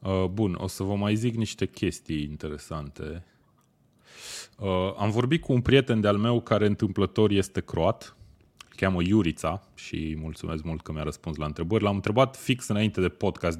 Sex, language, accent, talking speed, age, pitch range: male, Romanian, native, 160 wpm, 20-39, 80-110 Hz